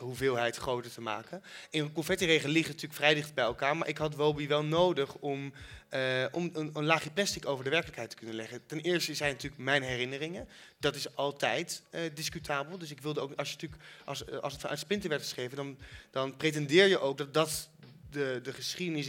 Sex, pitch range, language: male, 130-160 Hz, Dutch